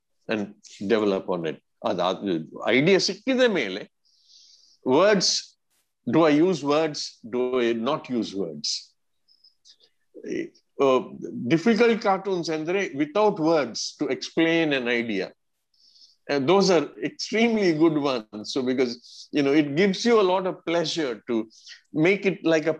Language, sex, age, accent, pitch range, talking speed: Kannada, male, 50-69, native, 125-195 Hz, 135 wpm